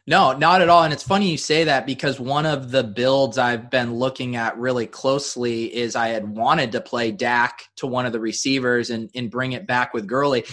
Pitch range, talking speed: 120-140 Hz, 230 wpm